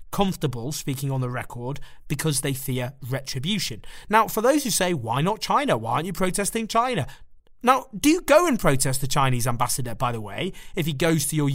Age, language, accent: 30-49, English, British